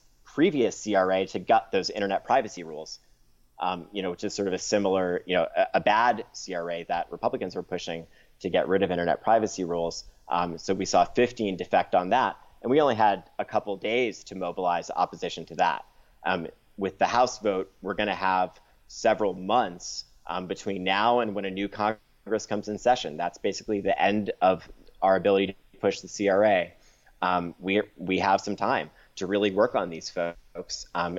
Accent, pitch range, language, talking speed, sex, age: American, 90-105 Hz, English, 190 wpm, male, 30-49